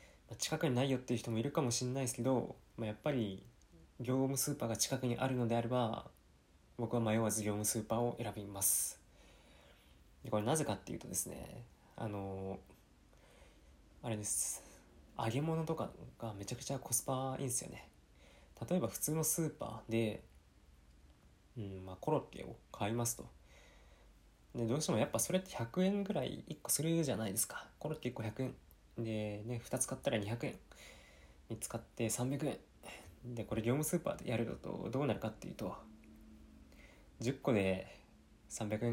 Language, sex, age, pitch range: Japanese, male, 20-39, 90-125 Hz